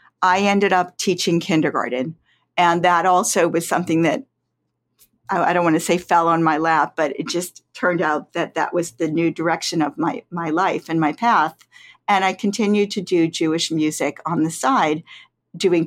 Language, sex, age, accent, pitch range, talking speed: English, female, 50-69, American, 165-205 Hz, 185 wpm